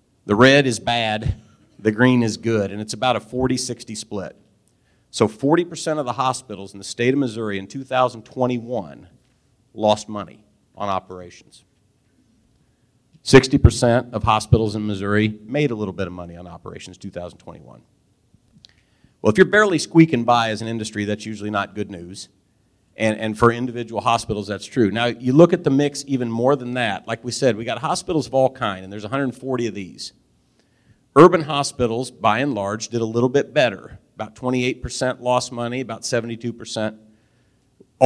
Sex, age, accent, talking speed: male, 40-59, American, 165 wpm